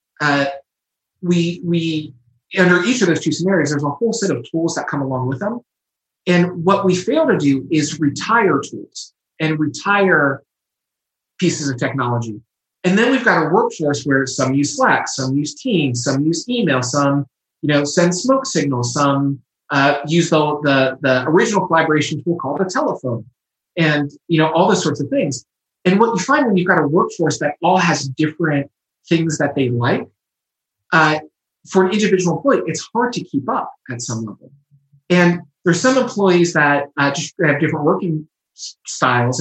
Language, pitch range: English, 140-180 Hz